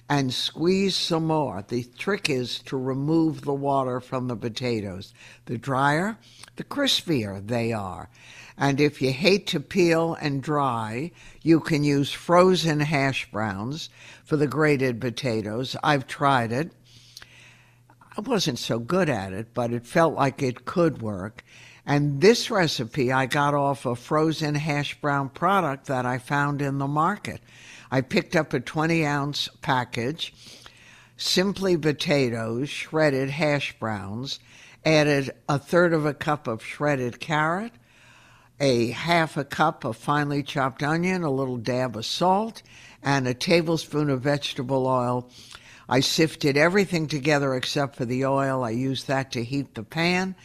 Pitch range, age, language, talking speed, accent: 125-155 Hz, 60-79, English, 150 wpm, American